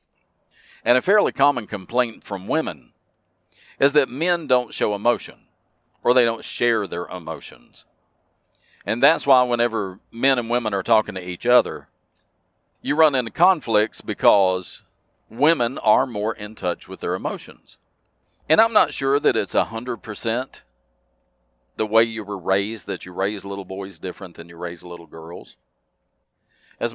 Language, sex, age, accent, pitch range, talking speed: English, male, 50-69, American, 90-120 Hz, 150 wpm